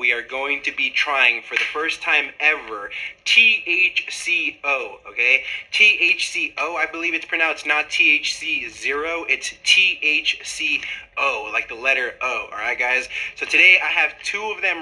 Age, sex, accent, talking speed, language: 20-39, male, American, 140 wpm, English